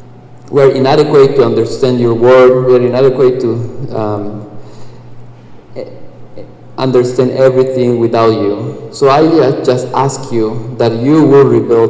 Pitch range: 120-145 Hz